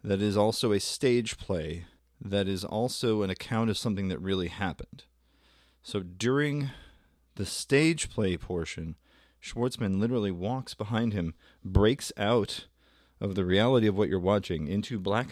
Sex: male